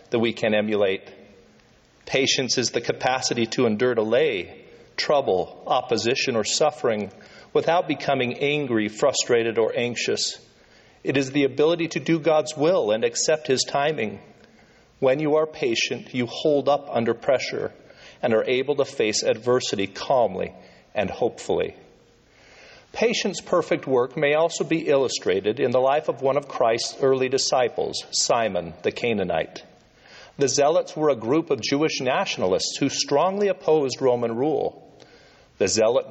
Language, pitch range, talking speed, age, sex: English, 115-165 Hz, 140 wpm, 40-59, male